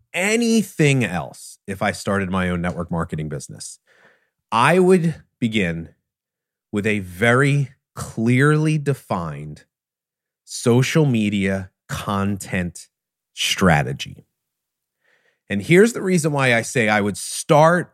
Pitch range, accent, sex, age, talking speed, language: 100-135 Hz, American, male, 30-49, 105 wpm, English